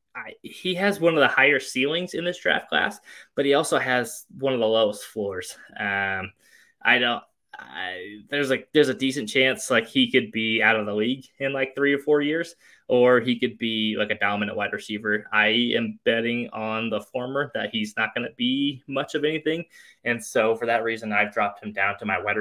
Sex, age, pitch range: male, 20-39, 110-145 Hz